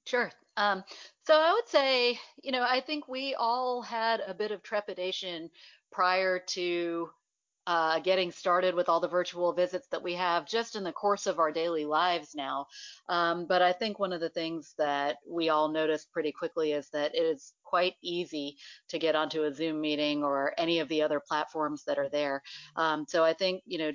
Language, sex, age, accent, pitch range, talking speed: English, female, 40-59, American, 150-185 Hz, 200 wpm